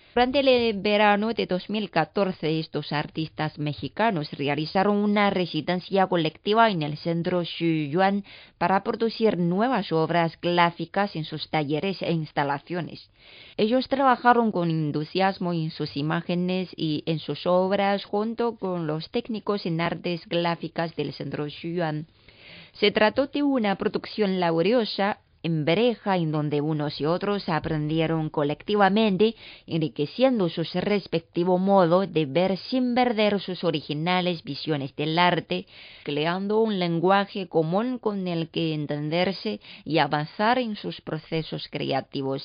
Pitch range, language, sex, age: 155-205 Hz, Chinese, female, 30-49